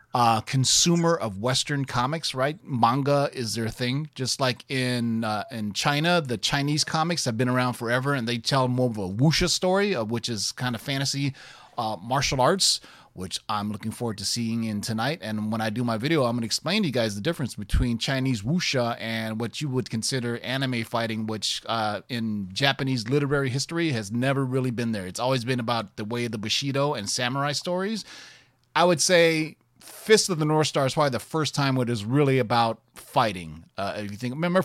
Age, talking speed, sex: 30-49, 205 wpm, male